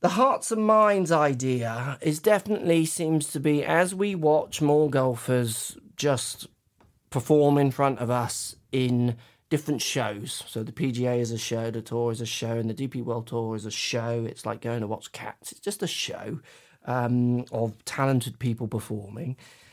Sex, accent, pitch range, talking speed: male, British, 120-155 Hz, 175 wpm